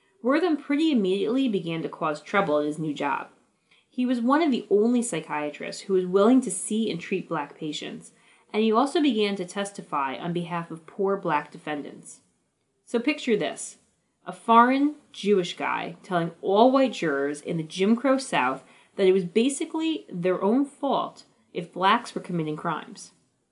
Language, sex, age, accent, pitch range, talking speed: English, female, 30-49, American, 165-230 Hz, 170 wpm